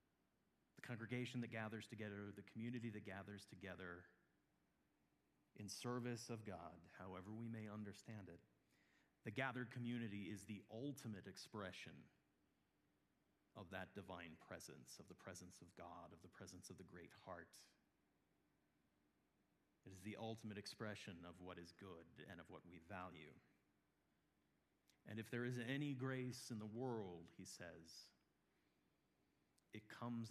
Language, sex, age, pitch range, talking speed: English, male, 40-59, 90-115 Hz, 135 wpm